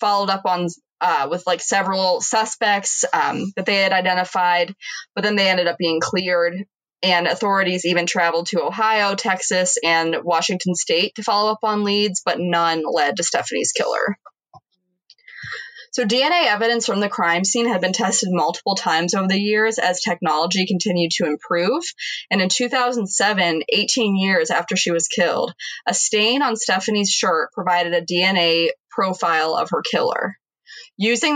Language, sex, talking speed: English, female, 160 wpm